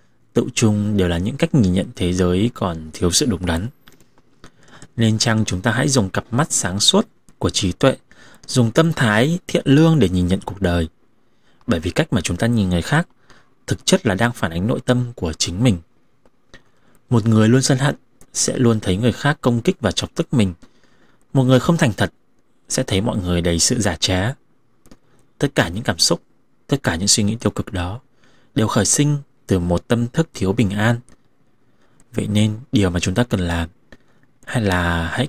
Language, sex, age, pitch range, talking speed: Vietnamese, male, 20-39, 95-125 Hz, 205 wpm